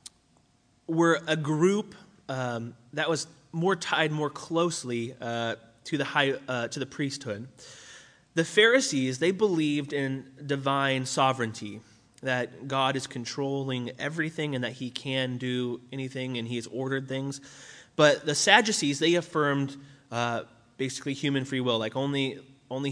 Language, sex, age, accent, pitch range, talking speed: English, male, 20-39, American, 120-145 Hz, 140 wpm